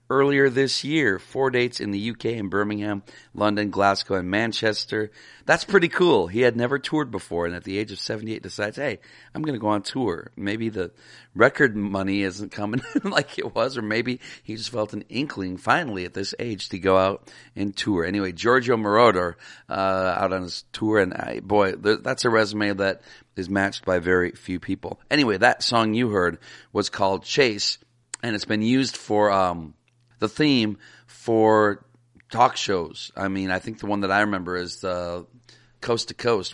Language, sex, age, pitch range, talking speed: English, male, 40-59, 95-115 Hz, 190 wpm